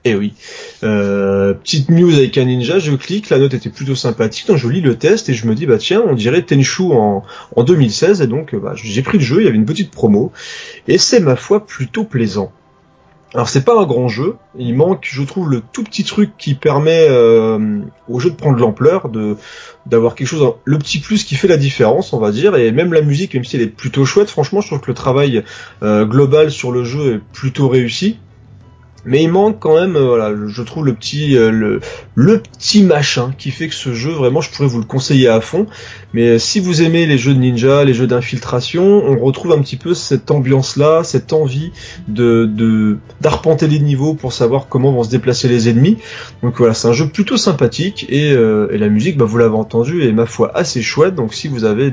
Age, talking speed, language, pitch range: 30-49, 230 wpm, French, 115-155 Hz